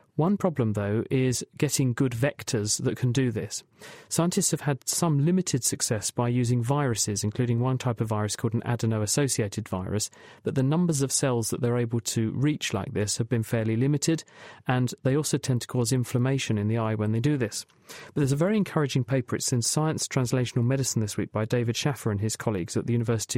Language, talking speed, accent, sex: English, 210 wpm, British, male